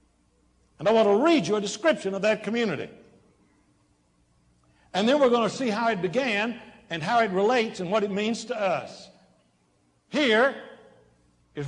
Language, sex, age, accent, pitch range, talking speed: English, male, 60-79, American, 150-225 Hz, 165 wpm